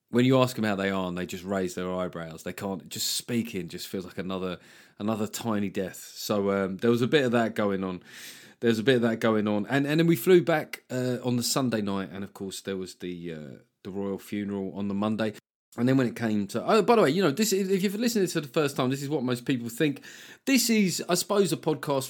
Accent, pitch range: British, 105-130 Hz